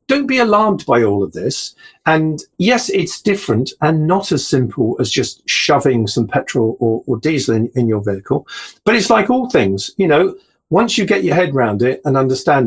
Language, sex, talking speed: English, male, 205 wpm